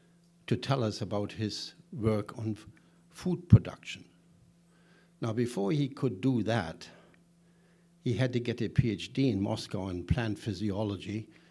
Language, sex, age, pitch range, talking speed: English, male, 60-79, 100-150 Hz, 140 wpm